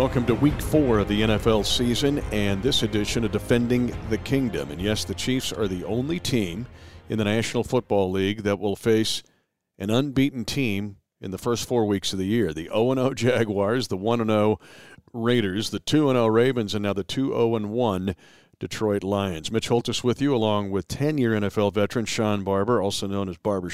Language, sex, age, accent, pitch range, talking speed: English, male, 50-69, American, 105-130 Hz, 180 wpm